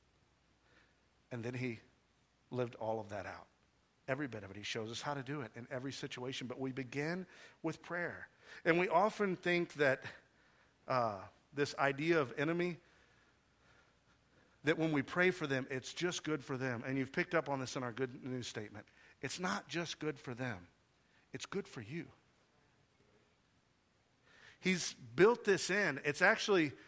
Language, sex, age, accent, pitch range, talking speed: English, male, 50-69, American, 135-190 Hz, 165 wpm